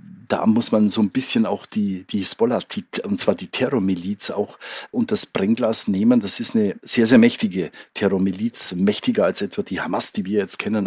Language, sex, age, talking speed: German, male, 50-69, 195 wpm